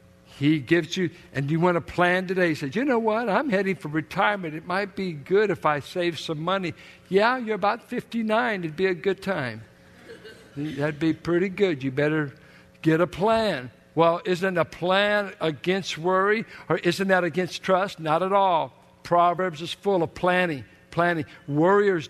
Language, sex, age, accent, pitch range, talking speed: English, male, 60-79, American, 140-195 Hz, 180 wpm